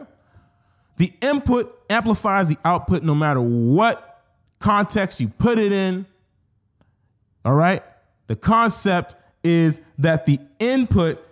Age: 30-49